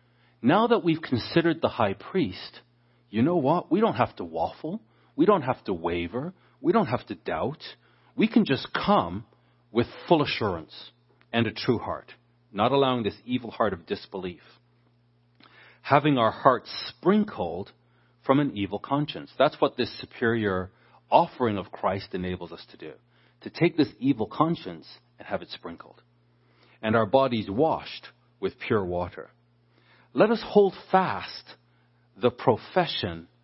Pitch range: 95-125 Hz